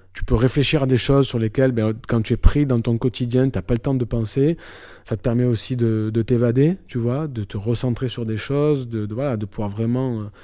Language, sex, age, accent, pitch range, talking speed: French, male, 20-39, French, 110-130 Hz, 255 wpm